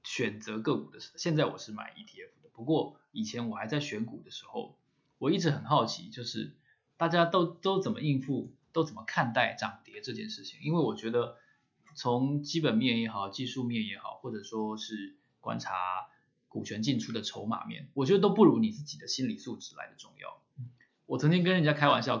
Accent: native